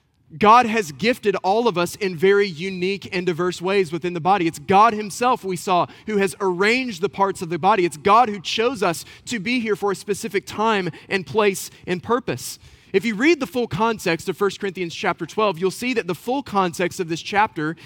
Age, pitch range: 30-49, 175-220 Hz